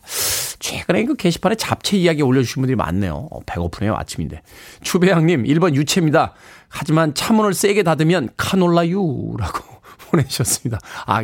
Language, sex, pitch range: Korean, male, 130-185 Hz